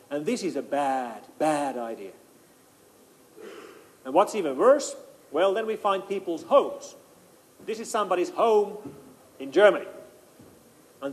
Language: Russian